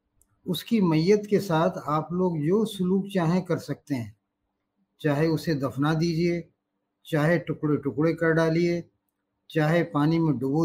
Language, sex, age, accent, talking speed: Hindi, male, 50-69, native, 140 wpm